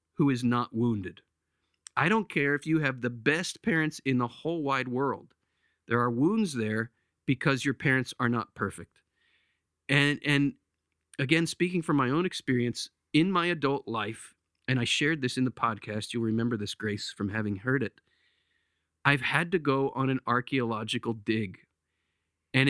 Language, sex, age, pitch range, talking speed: English, male, 40-59, 115-160 Hz, 170 wpm